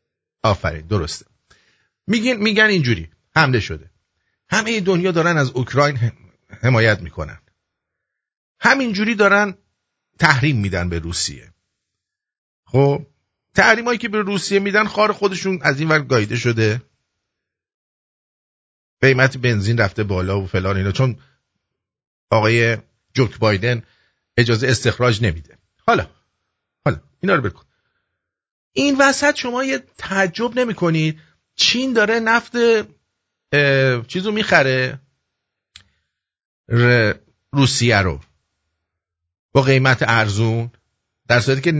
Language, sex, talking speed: English, male, 105 wpm